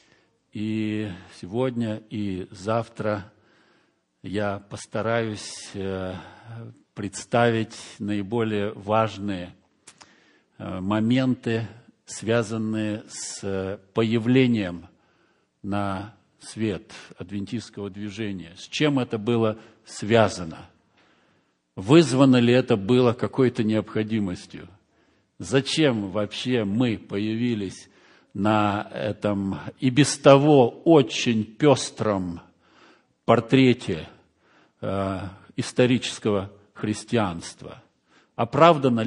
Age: 50-69